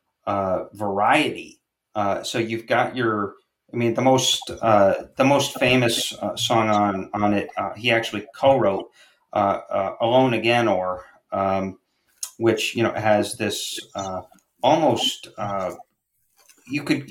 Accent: American